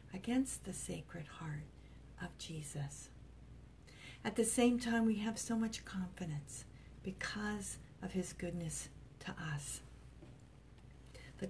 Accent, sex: American, female